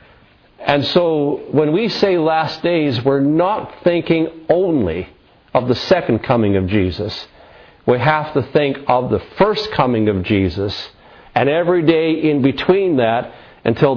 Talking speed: 145 wpm